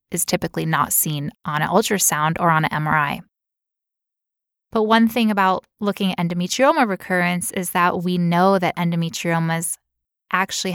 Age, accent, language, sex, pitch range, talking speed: 10-29, American, English, female, 175-220 Hz, 145 wpm